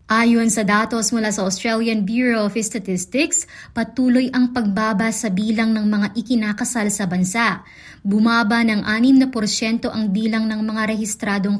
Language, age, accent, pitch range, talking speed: Filipino, 20-39, native, 220-260 Hz, 140 wpm